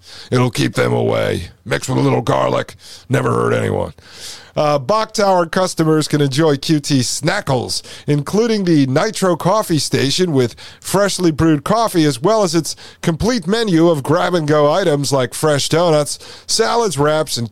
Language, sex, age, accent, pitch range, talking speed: English, male, 40-59, American, 135-175 Hz, 150 wpm